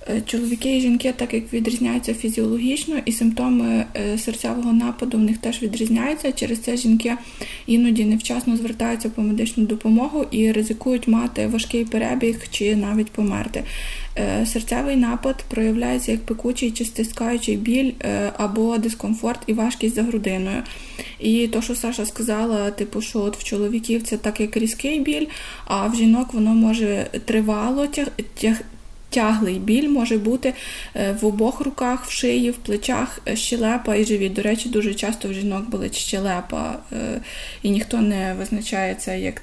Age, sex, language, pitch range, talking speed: 20-39, female, Ukrainian, 215-240 Hz, 145 wpm